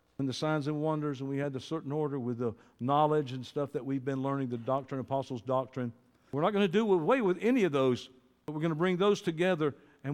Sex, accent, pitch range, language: male, American, 125-165 Hz, English